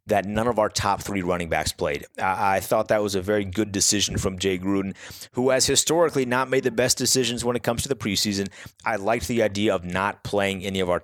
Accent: American